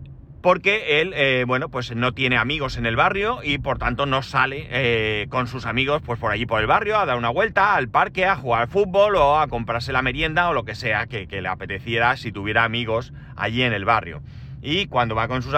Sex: male